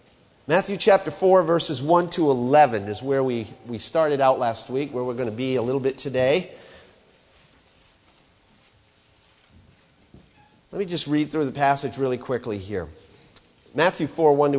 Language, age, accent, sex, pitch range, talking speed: English, 50-69, American, male, 125-170 Hz, 150 wpm